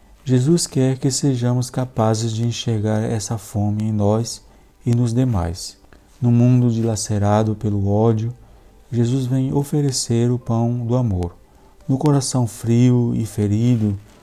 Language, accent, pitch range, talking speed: Portuguese, Brazilian, 105-130 Hz, 130 wpm